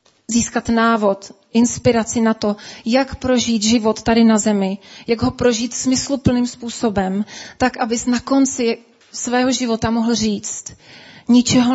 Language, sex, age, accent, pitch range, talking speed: Czech, female, 30-49, native, 220-245 Hz, 130 wpm